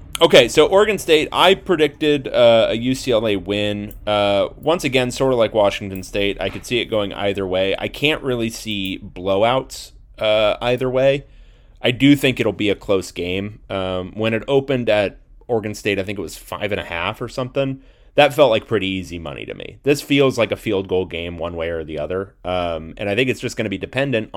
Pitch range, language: 95-135 Hz, English